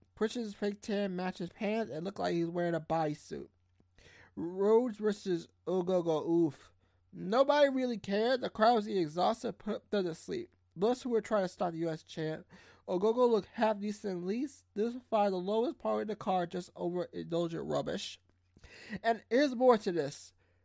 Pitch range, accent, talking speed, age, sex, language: 155-225 Hz, American, 180 wpm, 20-39, male, English